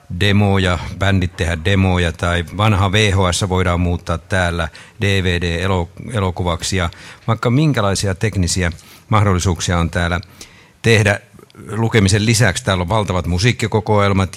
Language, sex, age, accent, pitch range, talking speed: Finnish, male, 50-69, native, 90-110 Hz, 105 wpm